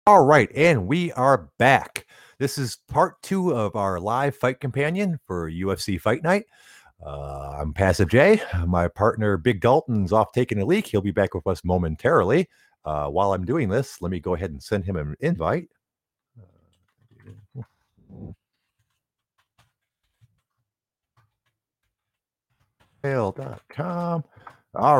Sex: male